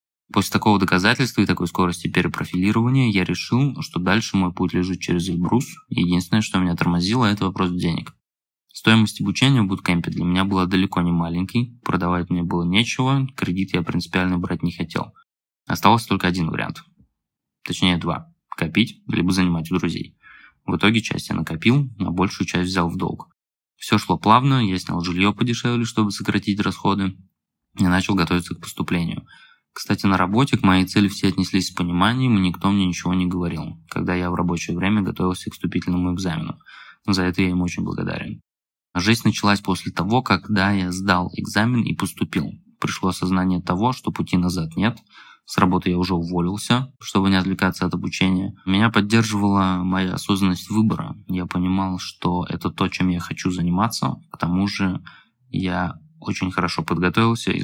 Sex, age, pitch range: male, 20-39, 90-105 Hz